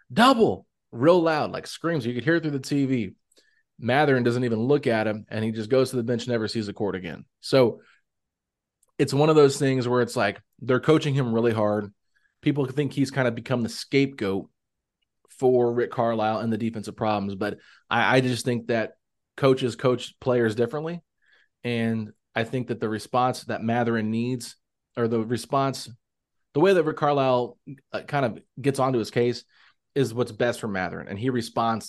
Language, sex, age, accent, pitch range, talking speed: English, male, 20-39, American, 115-135 Hz, 190 wpm